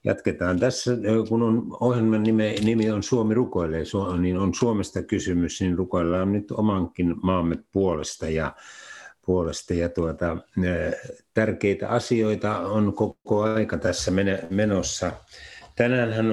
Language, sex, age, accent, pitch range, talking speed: Finnish, male, 60-79, native, 90-110 Hz, 115 wpm